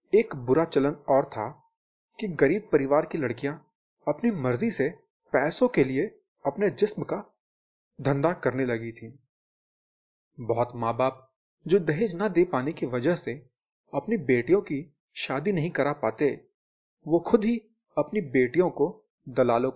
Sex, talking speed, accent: male, 145 wpm, native